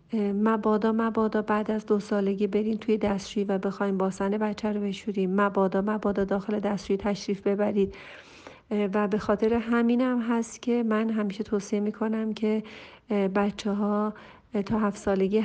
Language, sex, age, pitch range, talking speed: Persian, female, 40-59, 195-215 Hz, 145 wpm